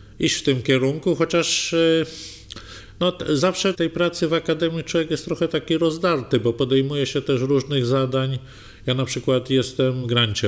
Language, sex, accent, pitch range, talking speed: Polish, male, native, 110-140 Hz, 165 wpm